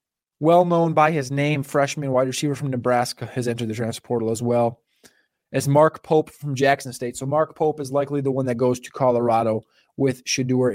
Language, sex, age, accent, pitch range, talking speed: English, male, 20-39, American, 135-180 Hz, 195 wpm